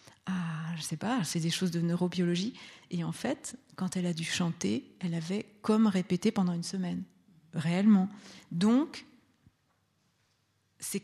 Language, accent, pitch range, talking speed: French, French, 175-215 Hz, 145 wpm